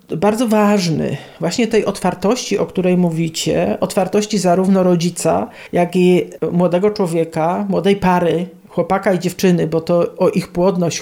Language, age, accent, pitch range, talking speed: Polish, 40-59, native, 175-200 Hz, 135 wpm